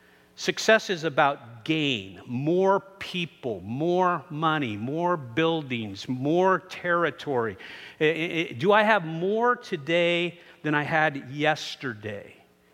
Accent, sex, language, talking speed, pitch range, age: American, male, English, 100 wpm, 120-175 Hz, 50-69